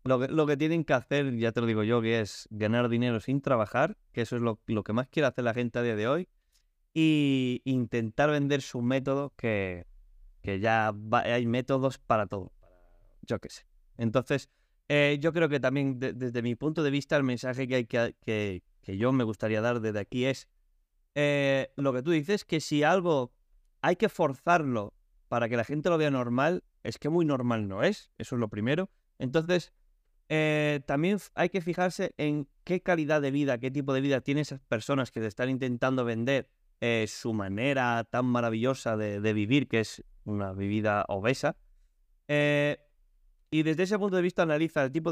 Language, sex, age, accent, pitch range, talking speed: Spanish, male, 20-39, Spanish, 115-145 Hz, 200 wpm